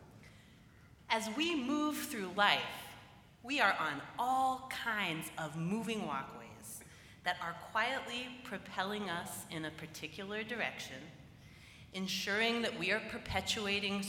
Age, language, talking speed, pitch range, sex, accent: 30-49, English, 115 wpm, 145-195 Hz, female, American